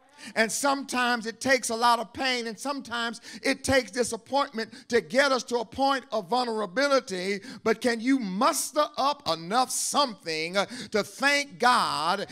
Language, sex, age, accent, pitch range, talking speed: English, male, 50-69, American, 220-275 Hz, 150 wpm